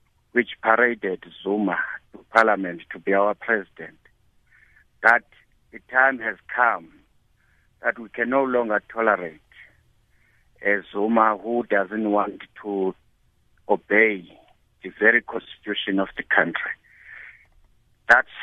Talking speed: 110 wpm